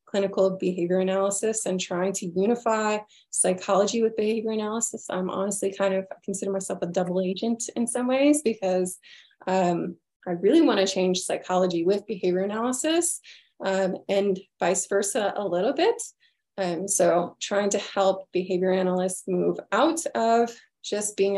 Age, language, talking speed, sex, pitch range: 20-39, English, 145 wpm, female, 185-230 Hz